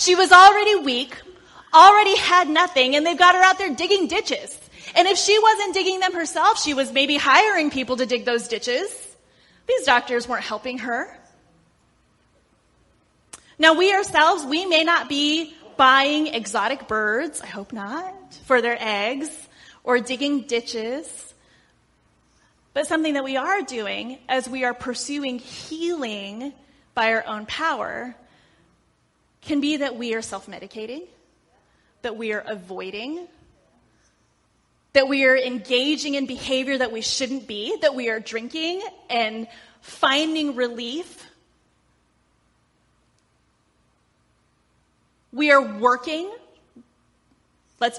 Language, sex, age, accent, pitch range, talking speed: English, female, 30-49, American, 235-320 Hz, 125 wpm